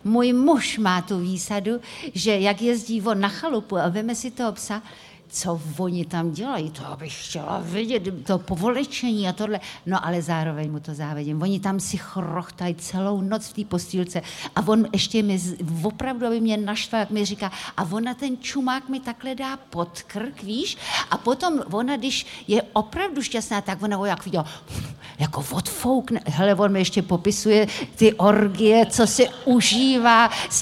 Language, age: Czech, 50-69